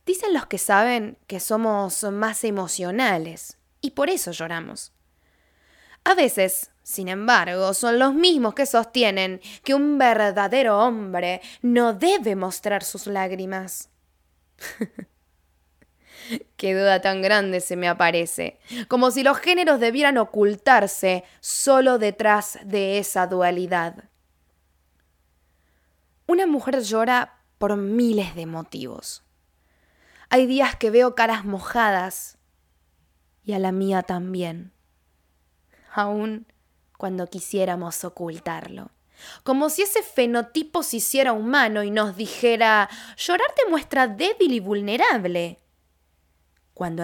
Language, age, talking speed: Spanish, 10-29, 110 wpm